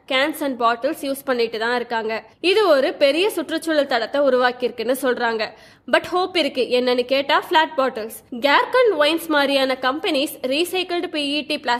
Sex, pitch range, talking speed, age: female, 255-315 Hz, 70 wpm, 20-39